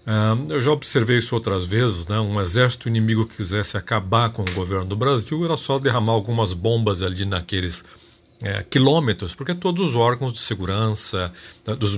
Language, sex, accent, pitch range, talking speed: Portuguese, male, Brazilian, 100-125 Hz, 165 wpm